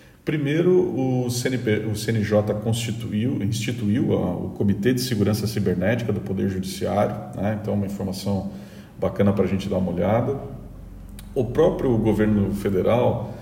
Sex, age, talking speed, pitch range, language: male, 40-59, 140 wpm, 100-115 Hz, Portuguese